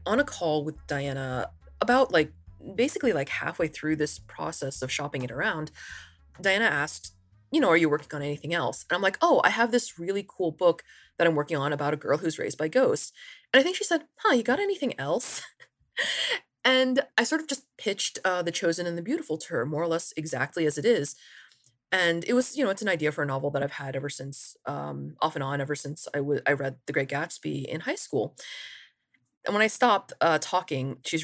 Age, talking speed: 20-39, 225 wpm